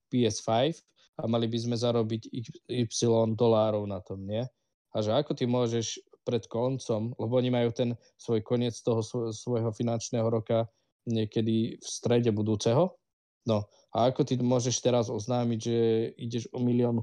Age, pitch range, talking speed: 20-39, 110-120 Hz, 150 wpm